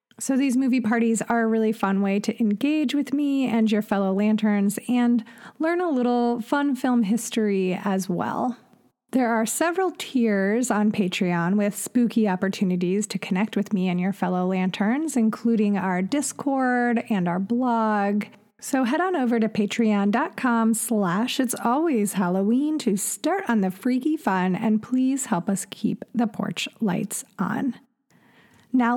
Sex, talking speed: female, 155 wpm